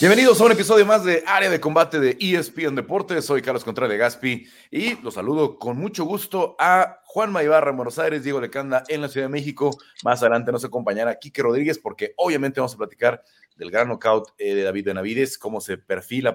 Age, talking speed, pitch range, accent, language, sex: 40-59, 200 wpm, 110-145 Hz, Mexican, Spanish, male